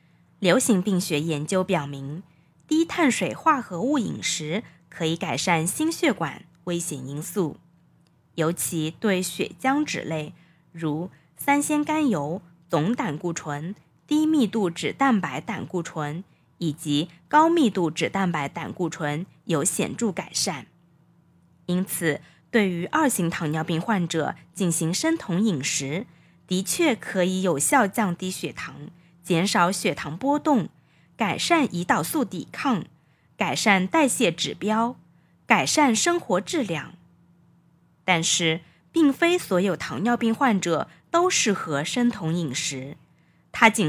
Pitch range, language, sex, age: 165-225 Hz, Chinese, female, 20-39